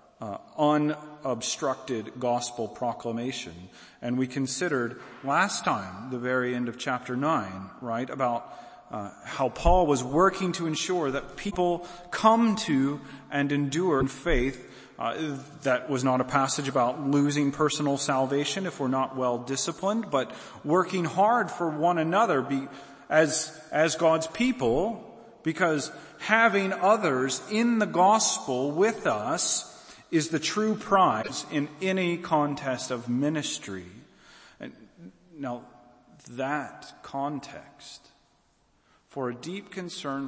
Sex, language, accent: male, English, American